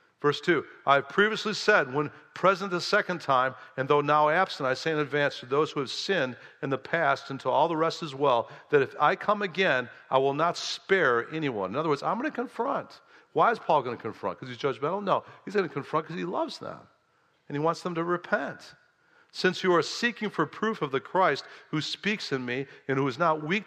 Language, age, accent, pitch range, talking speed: English, 50-69, American, 140-190 Hz, 235 wpm